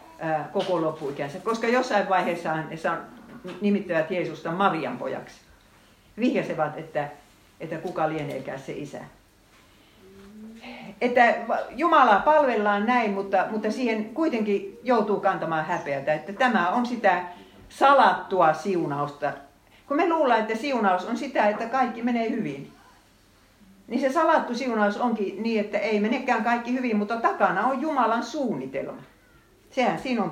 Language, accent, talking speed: Finnish, native, 125 wpm